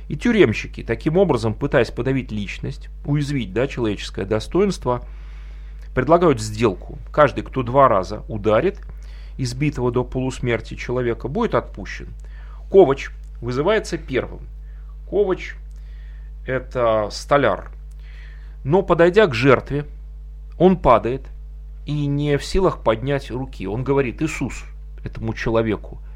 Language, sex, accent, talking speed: Russian, male, native, 110 wpm